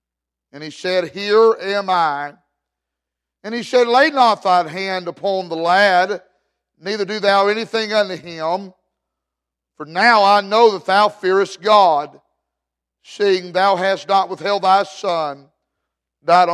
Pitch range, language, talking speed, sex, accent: 170-210 Hz, English, 140 wpm, male, American